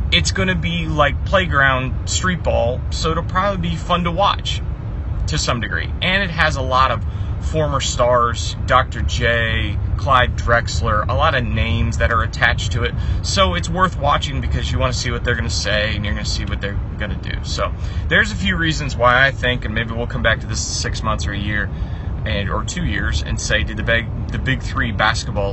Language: English